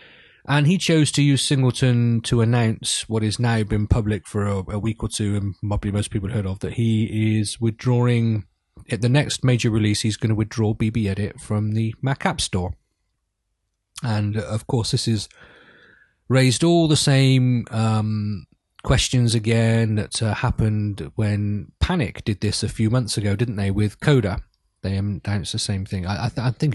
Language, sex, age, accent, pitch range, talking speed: English, male, 30-49, British, 100-120 Hz, 185 wpm